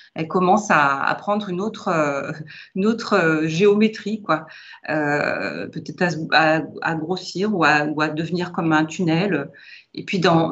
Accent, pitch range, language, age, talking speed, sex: French, 165-210 Hz, French, 40-59, 165 wpm, female